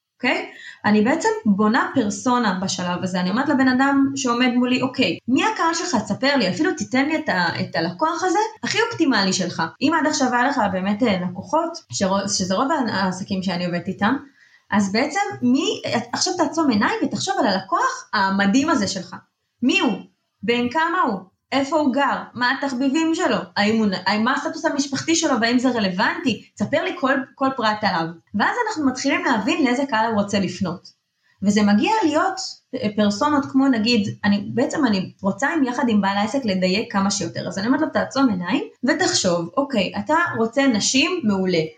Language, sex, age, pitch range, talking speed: Hebrew, female, 20-39, 200-280 Hz, 180 wpm